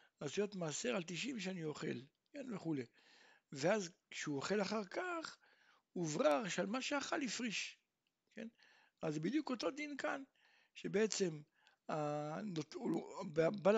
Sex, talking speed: male, 115 wpm